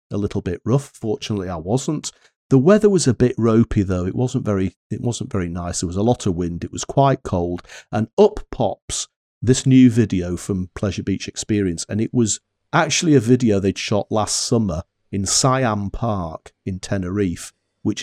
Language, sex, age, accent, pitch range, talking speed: English, male, 40-59, British, 95-120 Hz, 190 wpm